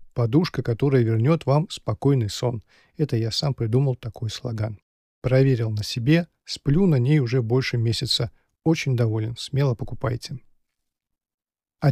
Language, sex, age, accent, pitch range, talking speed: Russian, male, 50-69, native, 130-165 Hz, 130 wpm